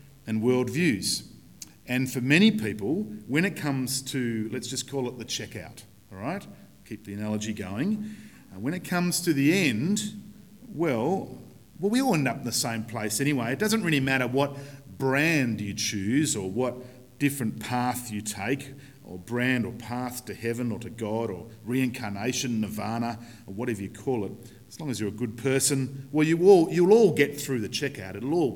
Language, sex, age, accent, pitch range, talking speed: English, male, 50-69, Australian, 105-135 Hz, 185 wpm